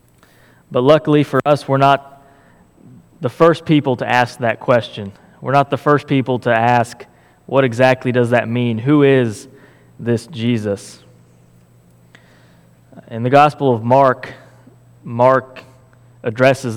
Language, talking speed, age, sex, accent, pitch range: English, 130 wpm, 20-39, male, American, 115-135 Hz